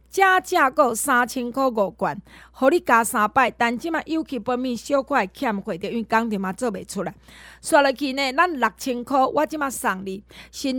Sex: female